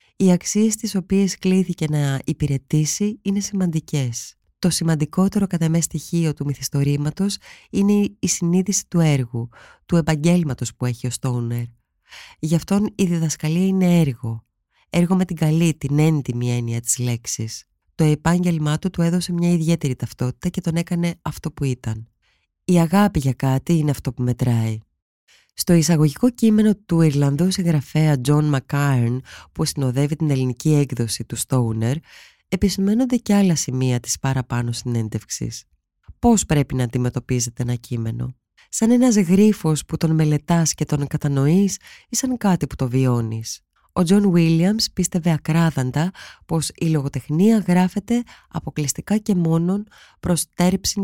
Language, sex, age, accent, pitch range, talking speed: Greek, female, 20-39, native, 125-180 Hz, 140 wpm